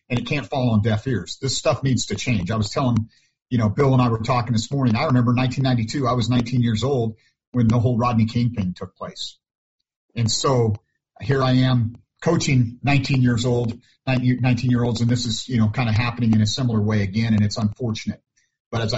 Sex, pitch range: male, 110-135 Hz